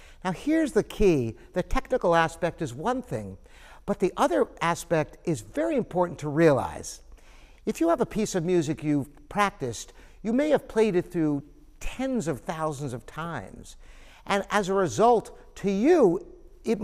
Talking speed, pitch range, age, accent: 165 wpm, 160-230 Hz, 60-79, American